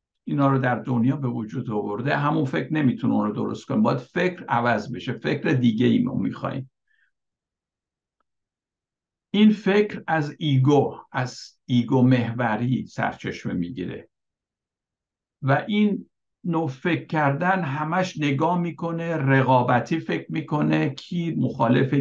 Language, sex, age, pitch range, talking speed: Persian, male, 60-79, 120-150 Hz, 120 wpm